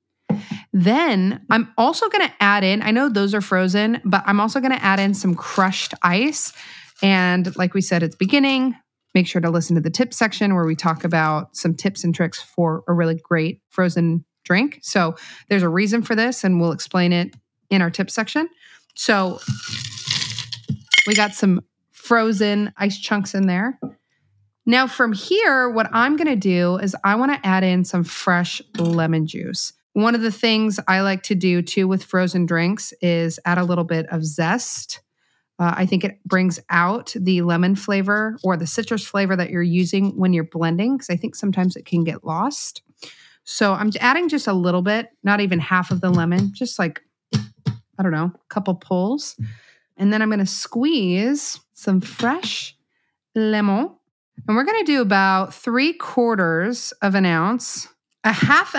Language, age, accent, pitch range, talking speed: English, 30-49, American, 175-225 Hz, 185 wpm